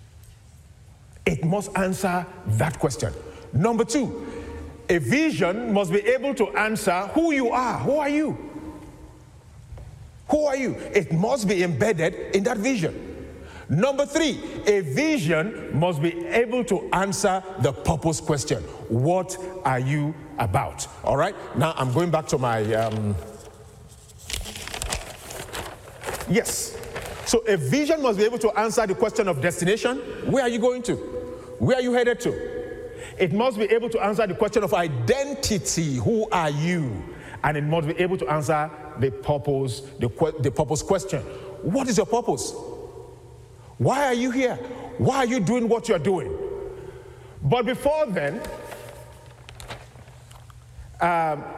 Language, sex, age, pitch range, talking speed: English, male, 50-69, 145-240 Hz, 145 wpm